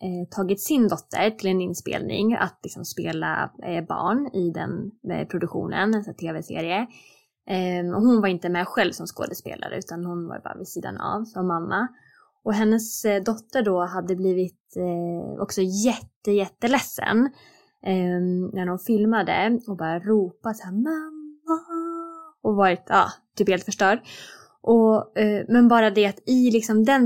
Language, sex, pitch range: Swedish, female, 185-225 Hz